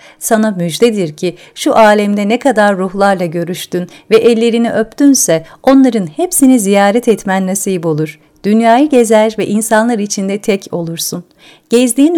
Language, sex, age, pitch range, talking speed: Turkish, female, 50-69, 180-235 Hz, 130 wpm